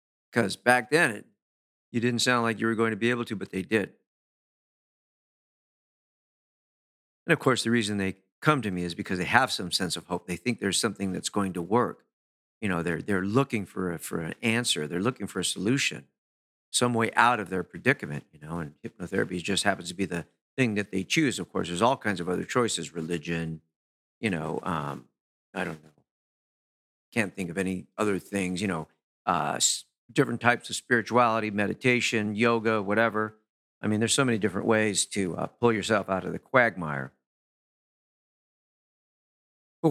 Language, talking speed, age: English, 185 wpm, 50-69